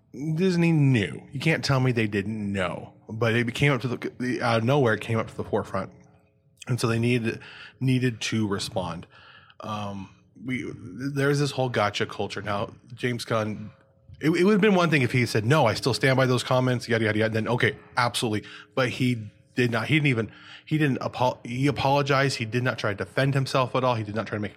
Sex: male